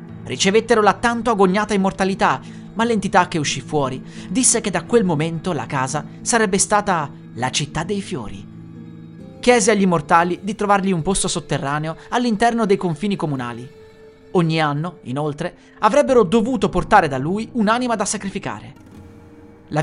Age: 30-49